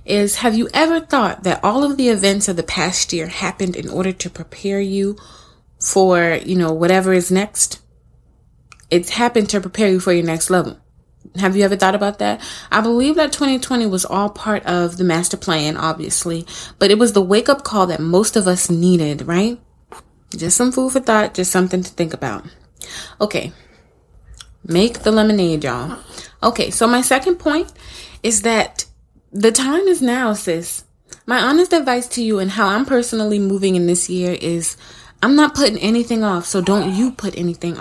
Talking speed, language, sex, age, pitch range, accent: 185 wpm, English, female, 20-39, 180-225 Hz, American